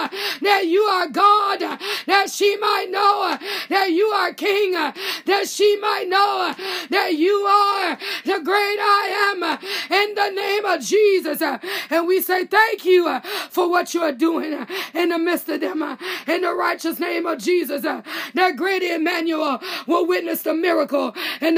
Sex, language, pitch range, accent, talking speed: female, English, 330-380 Hz, American, 160 wpm